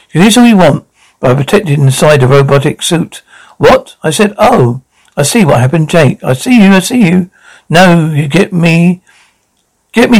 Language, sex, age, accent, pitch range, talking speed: English, male, 60-79, British, 150-205 Hz, 195 wpm